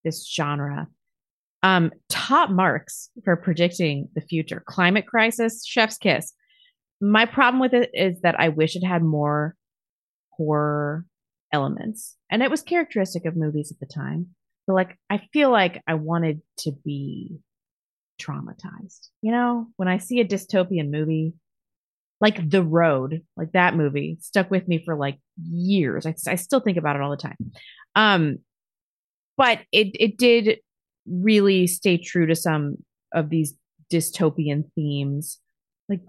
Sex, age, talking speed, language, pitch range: female, 30-49, 150 wpm, English, 155-195 Hz